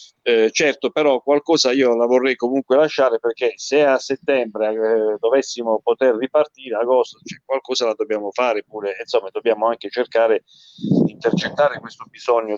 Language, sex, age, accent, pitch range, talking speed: Italian, male, 40-59, native, 110-145 Hz, 155 wpm